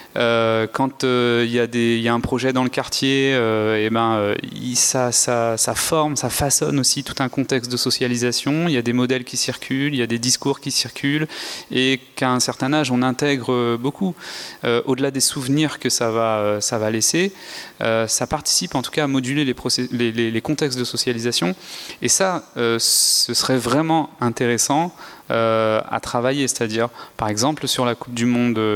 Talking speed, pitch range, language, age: 205 wpm, 120-140 Hz, French, 30-49